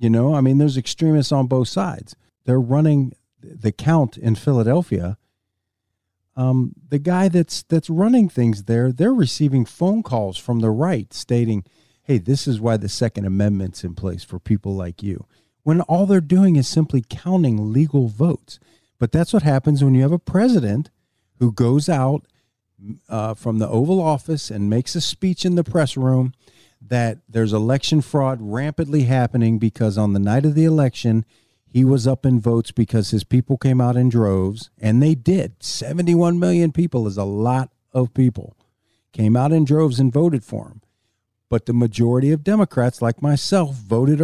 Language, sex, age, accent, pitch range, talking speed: English, male, 40-59, American, 115-150 Hz, 175 wpm